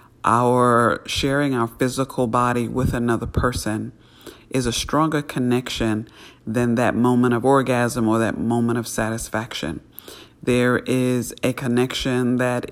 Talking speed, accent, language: 125 wpm, American, English